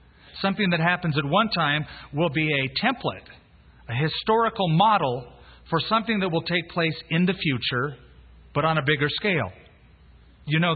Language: English